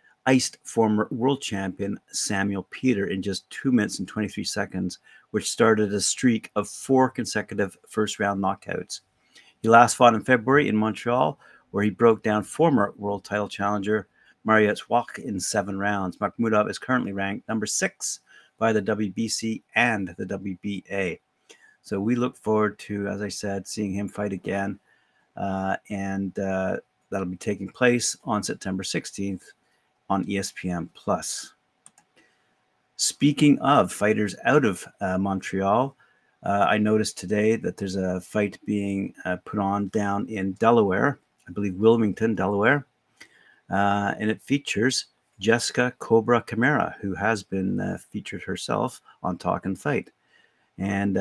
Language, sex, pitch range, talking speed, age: English, male, 95-110 Hz, 145 wpm, 50-69